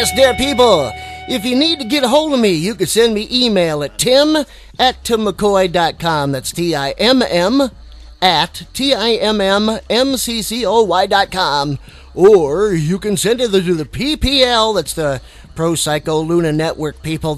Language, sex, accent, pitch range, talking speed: English, male, American, 160-240 Hz, 145 wpm